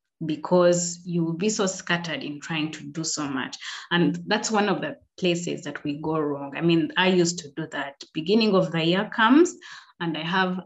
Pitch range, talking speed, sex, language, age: 165-205 Hz, 210 wpm, female, English, 30-49